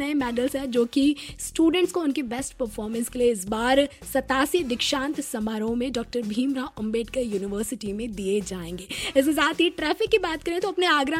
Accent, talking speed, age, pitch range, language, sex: native, 100 wpm, 20-39, 245-300 Hz, Hindi, female